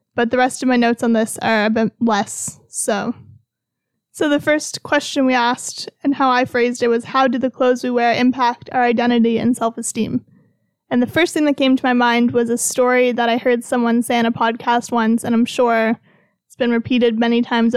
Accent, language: American, English